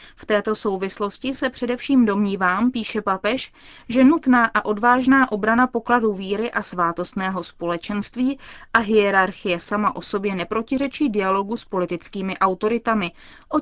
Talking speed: 130 wpm